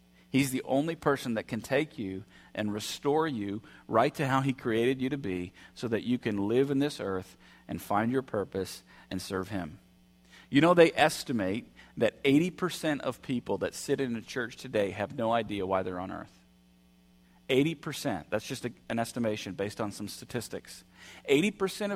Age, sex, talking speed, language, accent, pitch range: 40-59, male, 180 wpm, English, American, 105-150 Hz